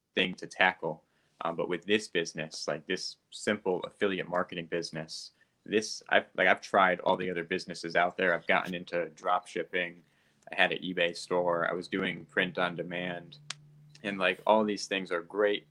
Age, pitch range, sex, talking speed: 20-39, 85-100 Hz, male, 185 wpm